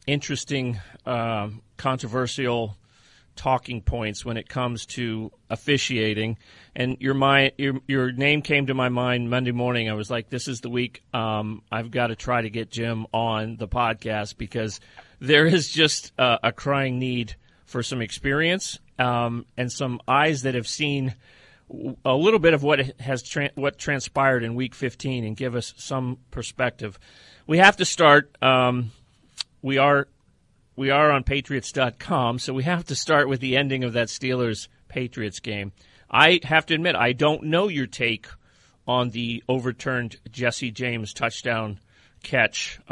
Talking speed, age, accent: 160 wpm, 40-59, American